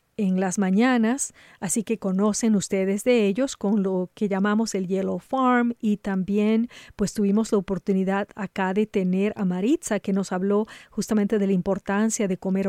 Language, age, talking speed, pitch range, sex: English, 40-59, 170 wpm, 195-235 Hz, female